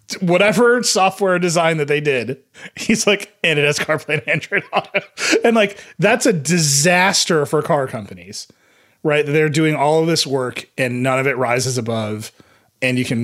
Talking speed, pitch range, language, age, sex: 175 wpm, 120-165 Hz, English, 30-49, male